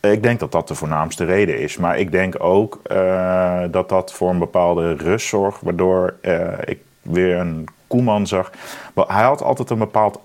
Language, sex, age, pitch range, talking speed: Dutch, male, 40-59, 90-105 Hz, 185 wpm